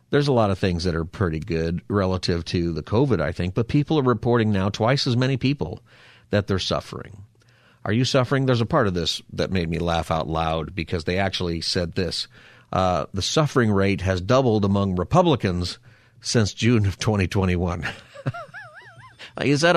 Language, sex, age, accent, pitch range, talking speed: English, male, 50-69, American, 95-120 Hz, 180 wpm